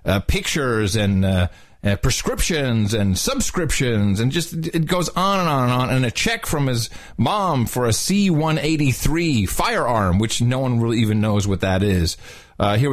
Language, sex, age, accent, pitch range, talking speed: English, male, 40-59, American, 110-150 Hz, 175 wpm